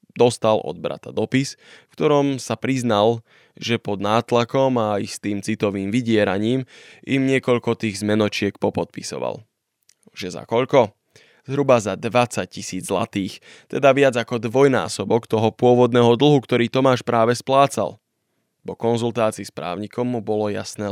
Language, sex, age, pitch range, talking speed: Slovak, male, 20-39, 100-120 Hz, 135 wpm